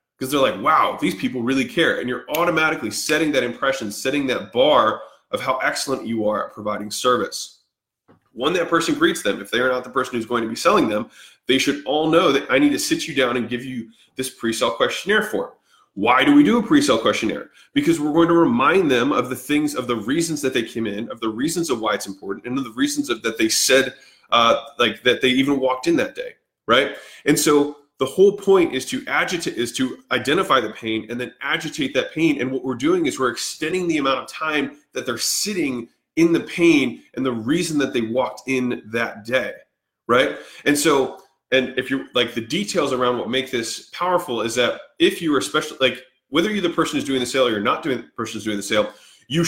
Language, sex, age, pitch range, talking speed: English, male, 20-39, 125-185 Hz, 230 wpm